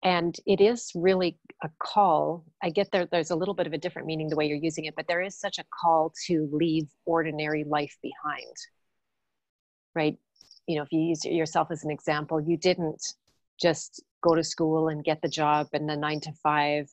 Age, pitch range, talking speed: 40-59, 150-170 Hz, 205 wpm